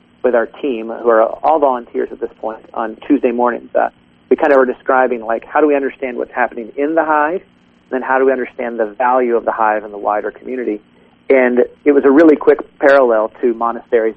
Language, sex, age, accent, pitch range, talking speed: English, male, 40-59, American, 105-135 Hz, 225 wpm